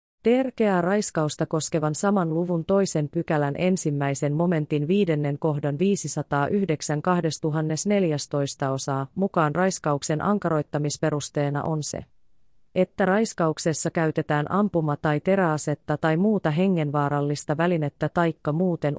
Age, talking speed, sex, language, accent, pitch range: 30-49, 95 wpm, female, Finnish, native, 150-185 Hz